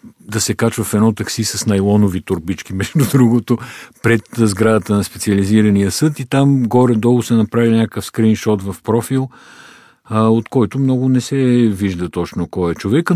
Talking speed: 160 wpm